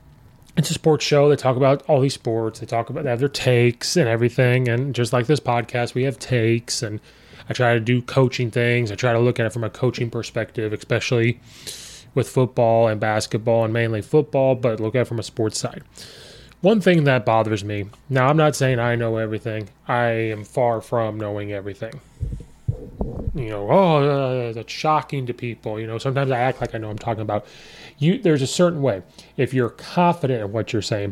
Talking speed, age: 210 wpm, 20-39